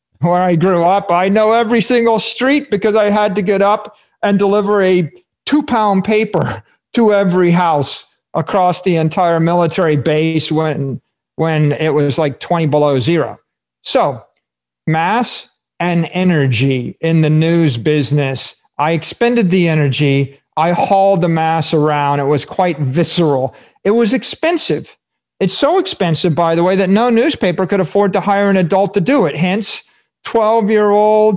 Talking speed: 155 wpm